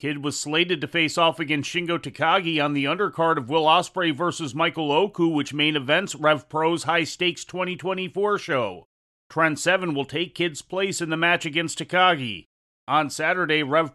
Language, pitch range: English, 150-170 Hz